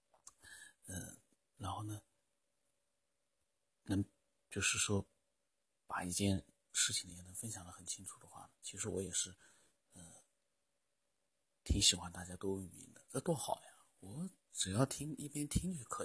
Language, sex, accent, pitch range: Chinese, male, native, 95-120 Hz